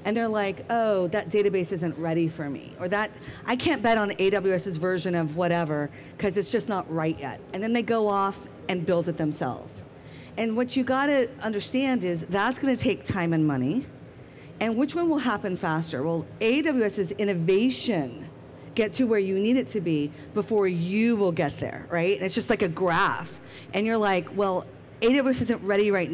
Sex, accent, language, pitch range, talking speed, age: female, American, English, 165-225 Hz, 195 wpm, 40-59